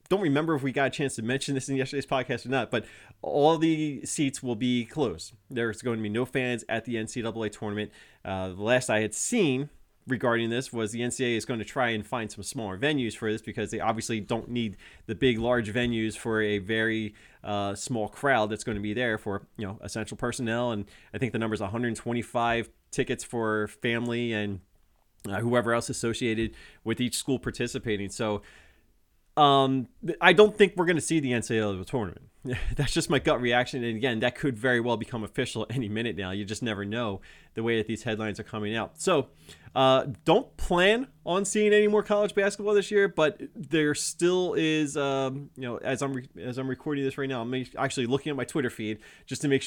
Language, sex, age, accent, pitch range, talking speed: English, male, 30-49, American, 110-135 Hz, 215 wpm